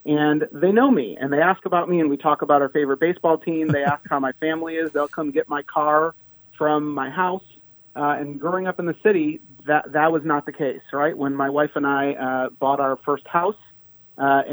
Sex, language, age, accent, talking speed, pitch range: male, English, 40-59, American, 230 wpm, 140-160 Hz